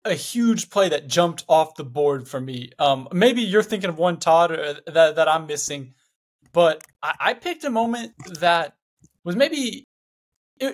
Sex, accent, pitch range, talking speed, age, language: male, American, 155-215 Hz, 180 wpm, 20-39, English